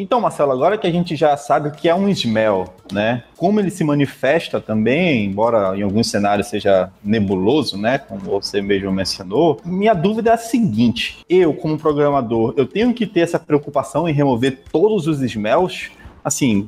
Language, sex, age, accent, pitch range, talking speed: Portuguese, male, 20-39, Brazilian, 125-195 Hz, 175 wpm